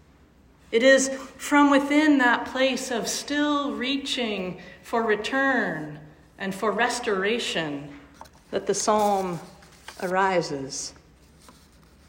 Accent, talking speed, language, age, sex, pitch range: American, 90 wpm, English, 40-59, female, 195-265 Hz